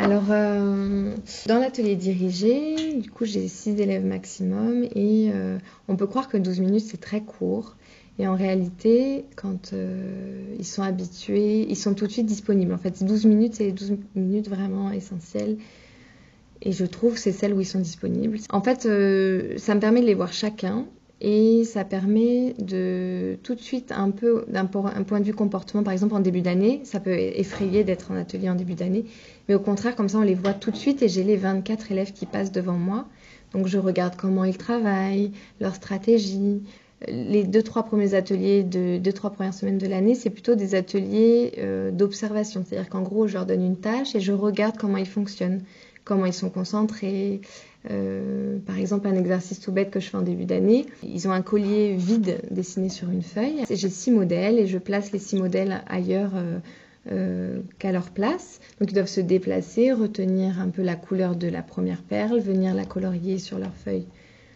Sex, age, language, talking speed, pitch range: female, 20-39, French, 200 wpm, 185-215 Hz